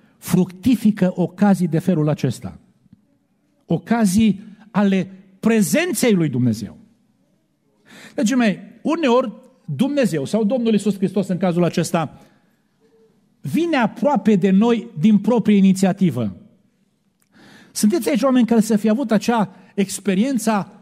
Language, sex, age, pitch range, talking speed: Romanian, male, 50-69, 190-235 Hz, 105 wpm